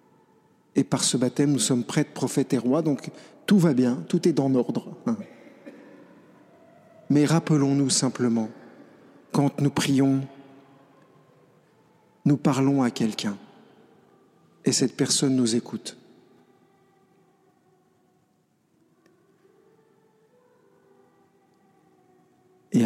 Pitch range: 125-170 Hz